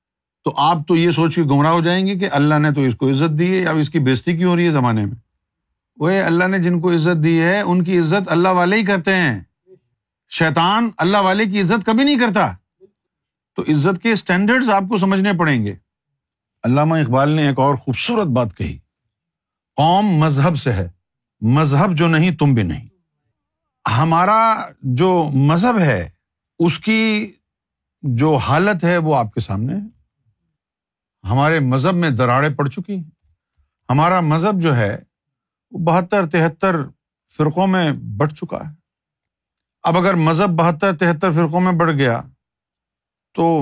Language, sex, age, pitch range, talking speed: Urdu, male, 50-69, 135-185 Hz, 165 wpm